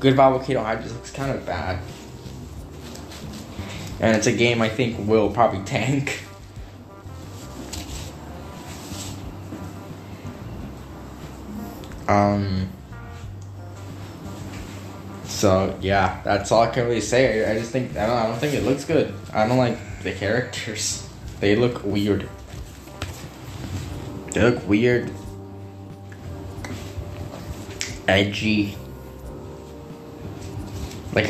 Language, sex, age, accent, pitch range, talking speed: English, male, 10-29, American, 95-120 Hz, 100 wpm